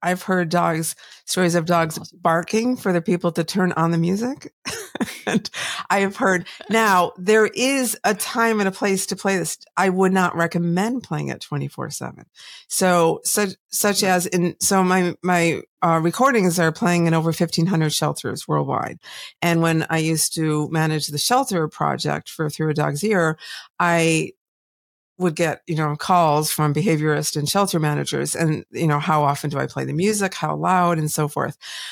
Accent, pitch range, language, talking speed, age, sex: American, 165-200 Hz, English, 180 wpm, 50-69, female